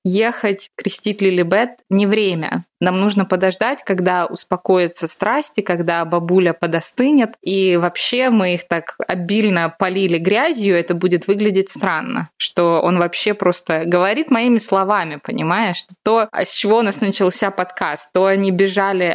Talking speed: 140 wpm